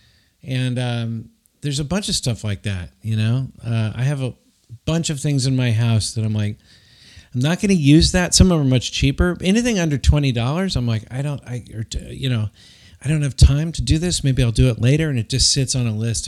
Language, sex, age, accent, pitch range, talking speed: English, male, 40-59, American, 110-140 Hz, 245 wpm